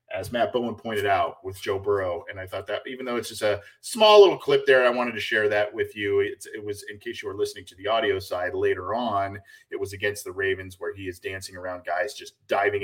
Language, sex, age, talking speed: English, male, 30-49, 255 wpm